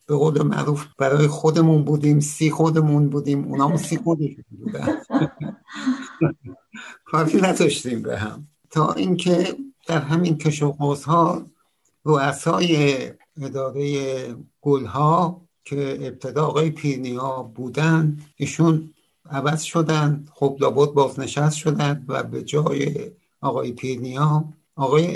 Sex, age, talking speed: male, 60-79, 105 wpm